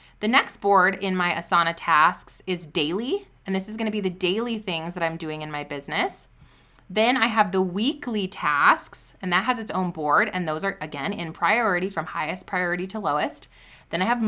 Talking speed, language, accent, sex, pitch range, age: 210 wpm, English, American, female, 165-210 Hz, 20-39